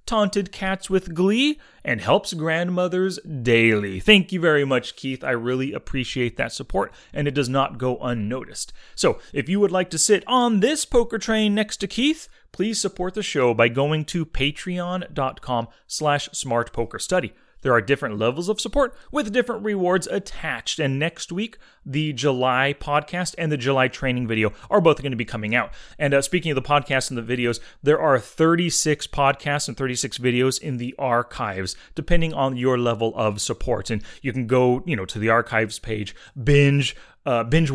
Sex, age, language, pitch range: male, 30-49, English, 120-170 Hz